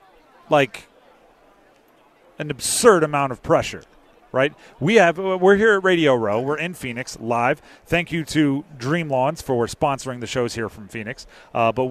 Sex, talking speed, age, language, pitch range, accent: male, 155 wpm, 30-49, English, 130-175 Hz, American